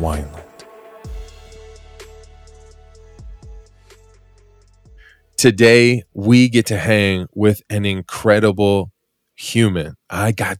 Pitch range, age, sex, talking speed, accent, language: 90-110 Hz, 20-39, male, 70 wpm, American, English